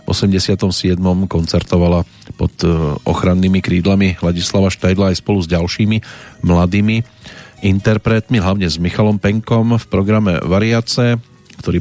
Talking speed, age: 110 wpm, 40-59